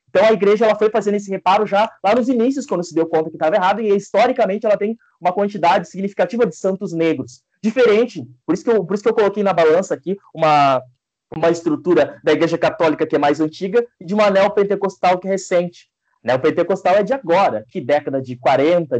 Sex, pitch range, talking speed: male, 155-220 Hz, 215 wpm